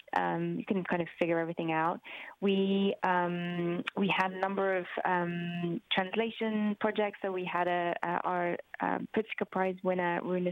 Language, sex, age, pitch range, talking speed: English, female, 20-39, 170-185 Hz, 165 wpm